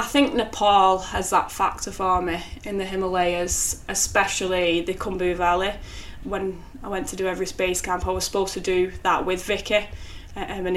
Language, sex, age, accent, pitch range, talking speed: English, female, 10-29, British, 170-195 Hz, 180 wpm